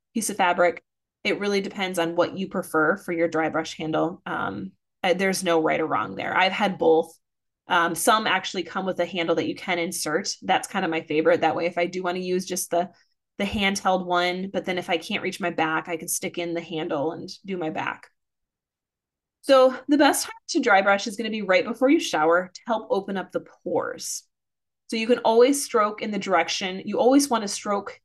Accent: American